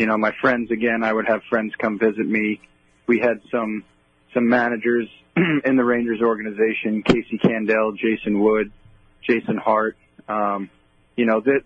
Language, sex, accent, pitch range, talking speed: English, male, American, 105-120 Hz, 160 wpm